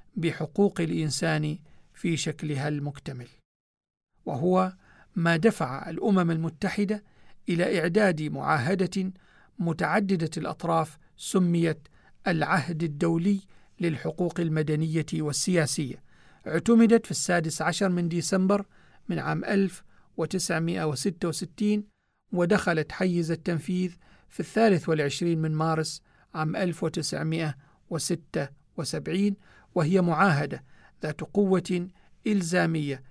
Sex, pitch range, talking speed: male, 155-185 Hz, 85 wpm